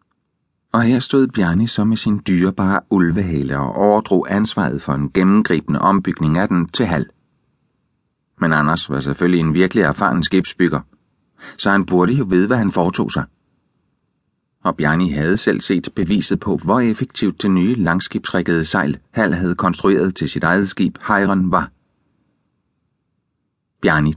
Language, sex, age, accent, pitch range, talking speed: Danish, male, 30-49, native, 85-110 Hz, 150 wpm